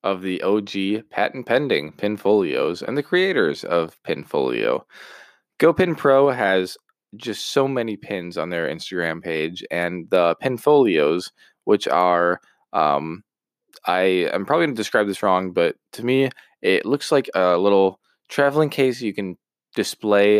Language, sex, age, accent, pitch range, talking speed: English, male, 20-39, American, 90-115 Hz, 135 wpm